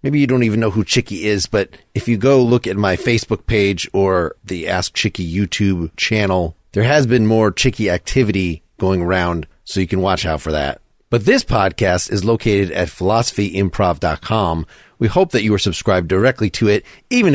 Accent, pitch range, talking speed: American, 95-125 Hz, 190 wpm